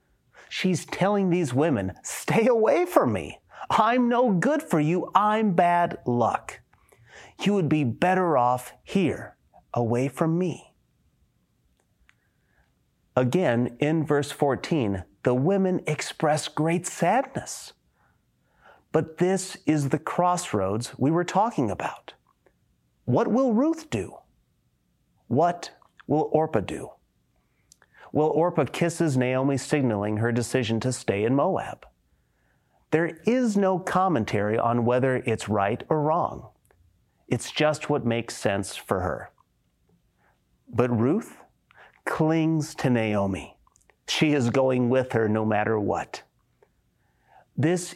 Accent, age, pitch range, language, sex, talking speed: American, 30-49, 115-175 Hz, English, male, 115 wpm